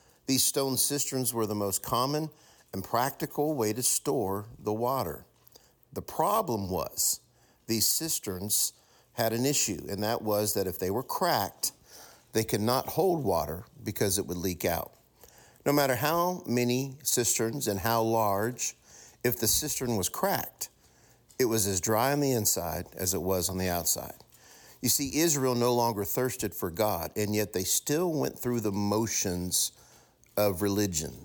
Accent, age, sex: American, 50-69, male